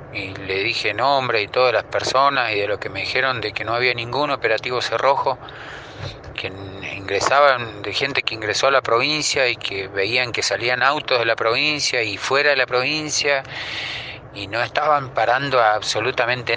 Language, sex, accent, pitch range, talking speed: Spanish, male, Argentinian, 110-135 Hz, 180 wpm